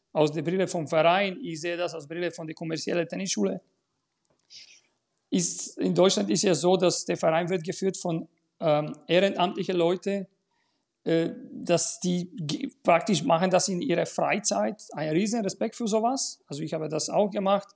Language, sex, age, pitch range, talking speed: German, male, 40-59, 175-205 Hz, 175 wpm